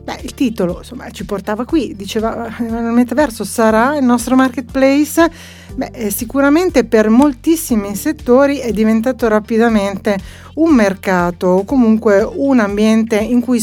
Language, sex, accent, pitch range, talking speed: Italian, female, native, 200-265 Hz, 130 wpm